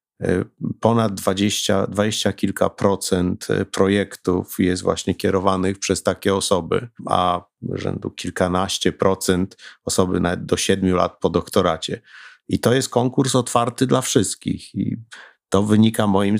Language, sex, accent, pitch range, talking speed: Polish, male, native, 90-100 Hz, 120 wpm